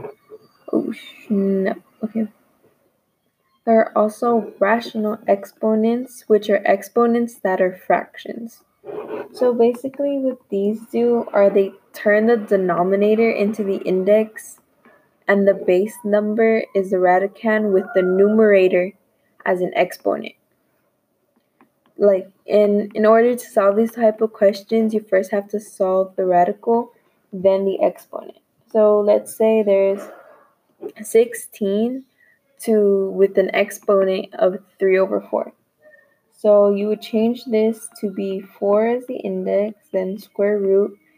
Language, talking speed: English, 125 wpm